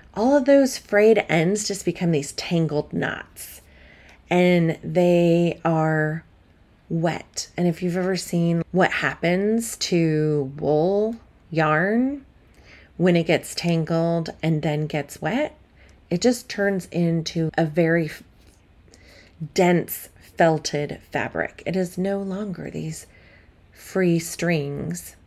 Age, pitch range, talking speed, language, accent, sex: 30-49, 150-185 Hz, 115 wpm, English, American, female